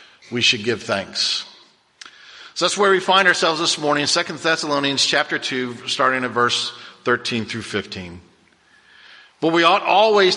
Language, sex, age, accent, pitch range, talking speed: English, male, 50-69, American, 130-170 Hz, 155 wpm